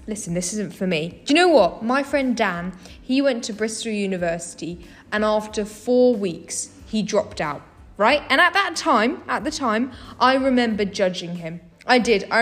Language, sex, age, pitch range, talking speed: English, female, 10-29, 215-285 Hz, 190 wpm